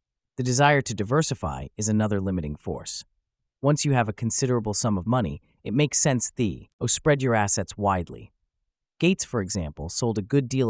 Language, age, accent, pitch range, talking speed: English, 30-49, American, 95-130 Hz, 175 wpm